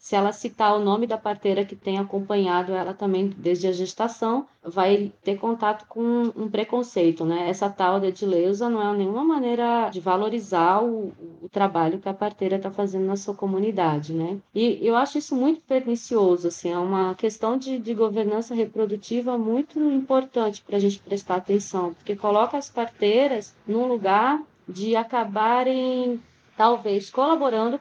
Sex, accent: female, Brazilian